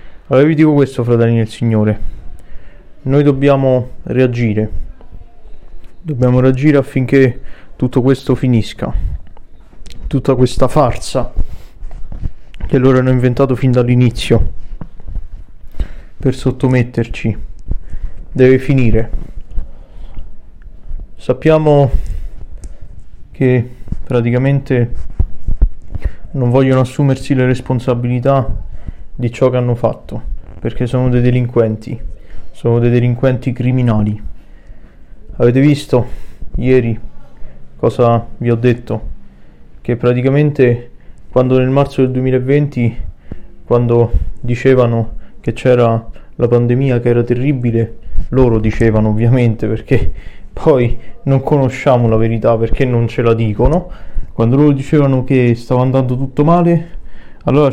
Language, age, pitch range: Italian, 20-39, 105-130 Hz